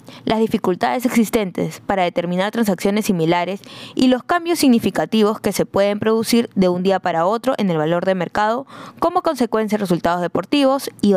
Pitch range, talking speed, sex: 180-240 Hz, 165 wpm, female